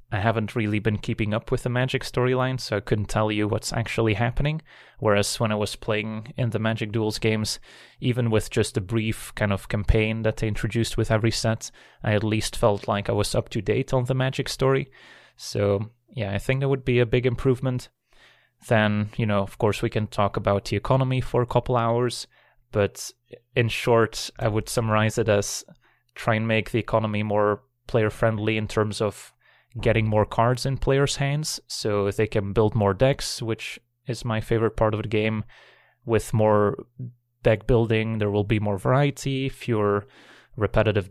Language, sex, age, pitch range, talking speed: English, male, 20-39, 105-120 Hz, 190 wpm